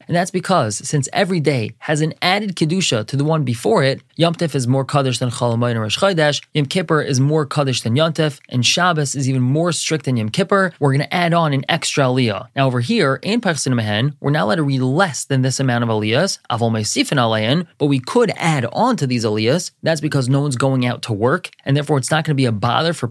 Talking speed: 245 wpm